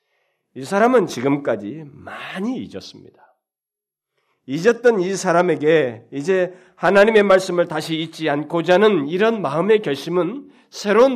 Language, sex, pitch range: Korean, male, 125-190 Hz